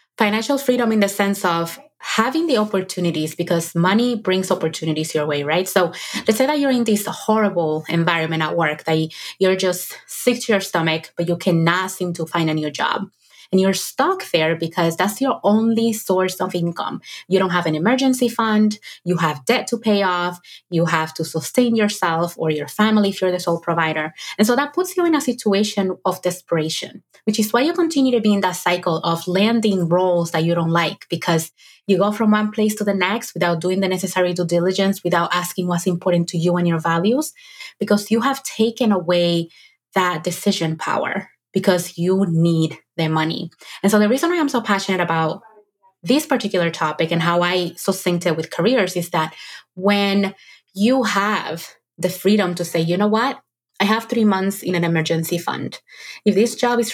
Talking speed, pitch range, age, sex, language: 195 wpm, 170-215 Hz, 20-39, female, English